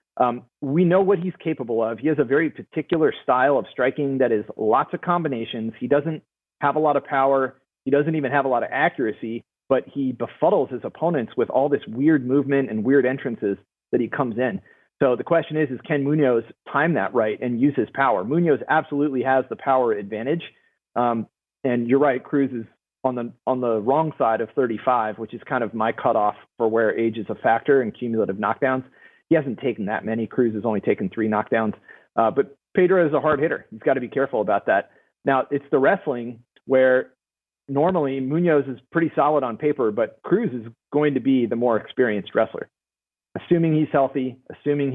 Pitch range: 120-145 Hz